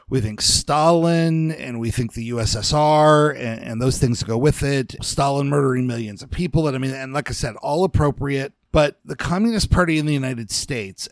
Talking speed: 200 wpm